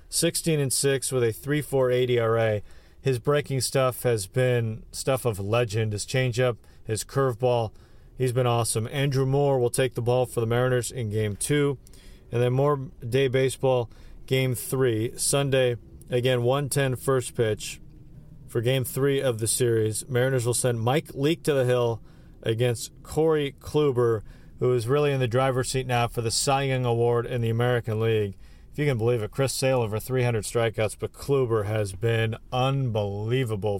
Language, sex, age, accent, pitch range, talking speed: English, male, 40-59, American, 115-135 Hz, 165 wpm